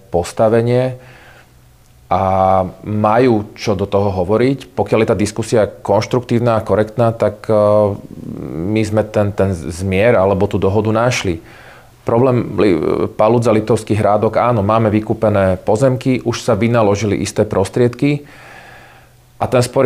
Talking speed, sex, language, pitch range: 120 wpm, male, English, 100-120 Hz